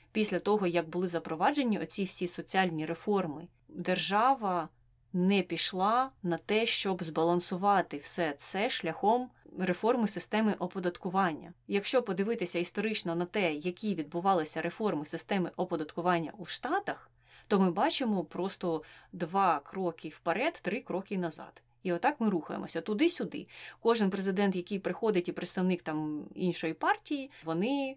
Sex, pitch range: female, 170-215 Hz